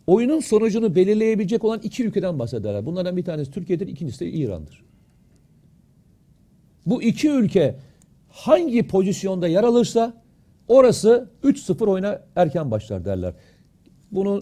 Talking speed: 115 wpm